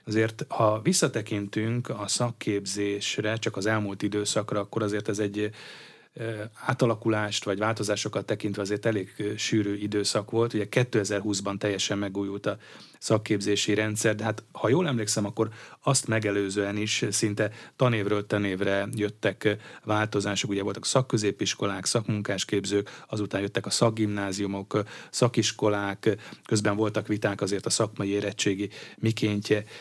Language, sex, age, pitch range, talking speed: Hungarian, male, 30-49, 100-115 Hz, 120 wpm